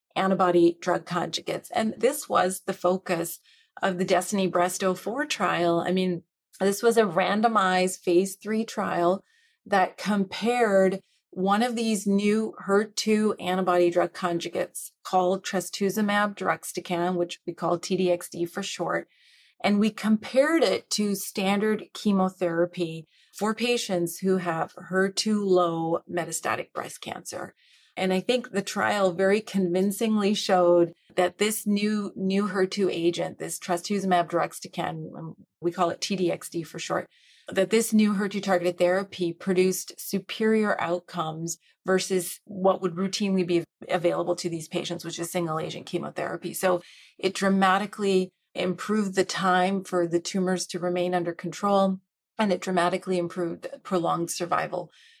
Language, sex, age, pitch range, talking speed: English, female, 30-49, 175-200 Hz, 135 wpm